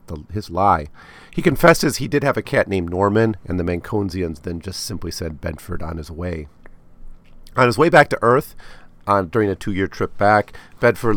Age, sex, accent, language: 50-69, male, American, English